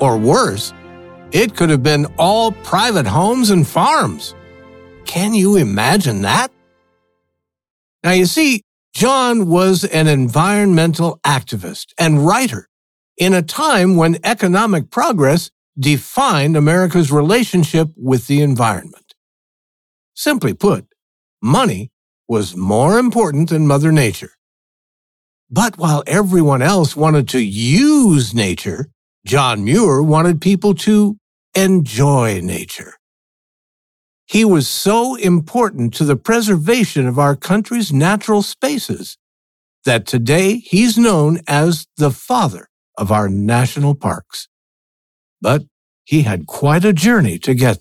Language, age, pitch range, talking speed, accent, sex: English, 60-79, 120-195 Hz, 115 wpm, American, male